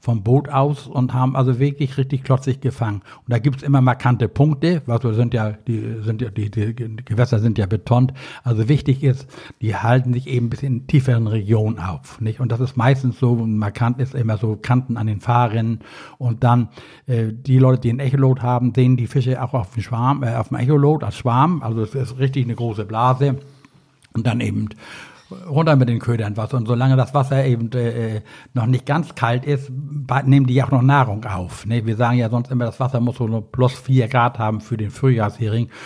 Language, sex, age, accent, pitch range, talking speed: German, male, 60-79, German, 115-130 Hz, 210 wpm